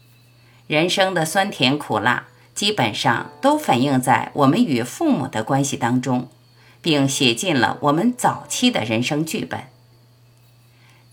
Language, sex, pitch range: Chinese, female, 120-155 Hz